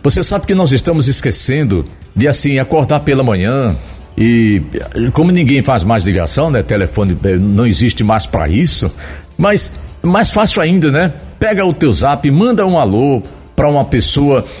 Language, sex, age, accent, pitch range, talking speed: Portuguese, male, 60-79, Brazilian, 110-170 Hz, 160 wpm